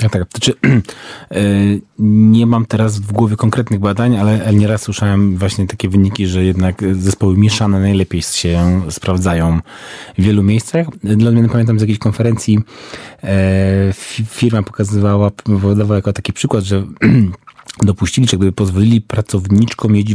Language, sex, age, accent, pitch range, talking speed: Polish, male, 30-49, native, 100-125 Hz, 120 wpm